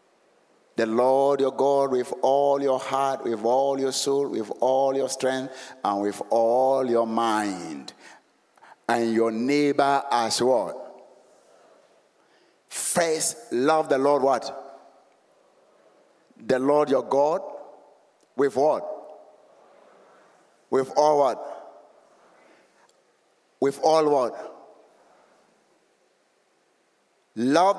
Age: 50-69